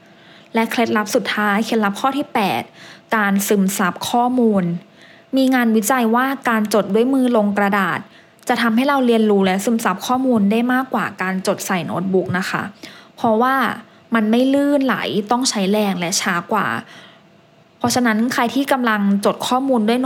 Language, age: English, 20-39